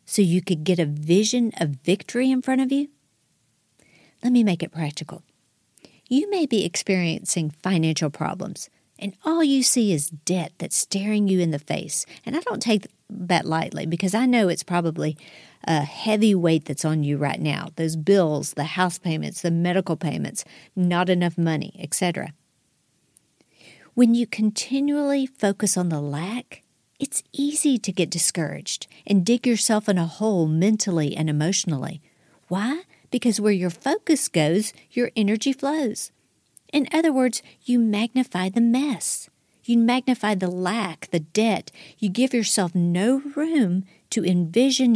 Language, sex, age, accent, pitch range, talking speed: English, female, 50-69, American, 170-245 Hz, 155 wpm